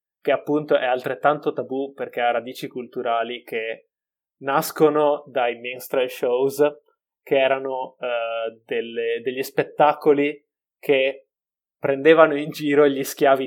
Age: 20-39